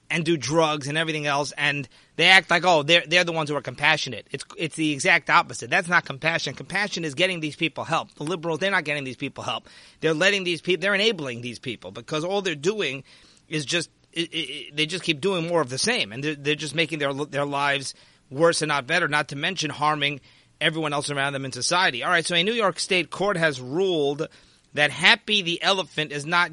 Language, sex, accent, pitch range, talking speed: English, male, American, 150-185 Hz, 230 wpm